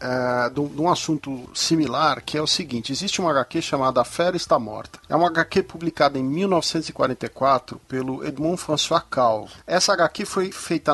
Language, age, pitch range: Portuguese, 40-59, 145-185 Hz